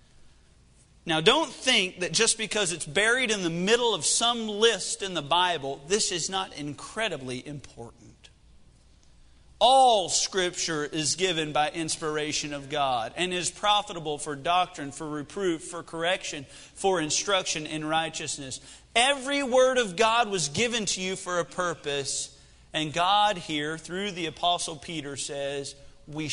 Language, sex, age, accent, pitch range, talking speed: English, male, 40-59, American, 145-200 Hz, 145 wpm